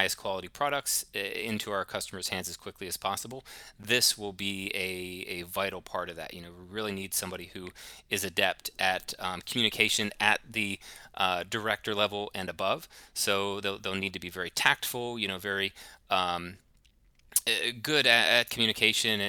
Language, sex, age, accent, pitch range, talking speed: English, male, 30-49, American, 95-110 Hz, 170 wpm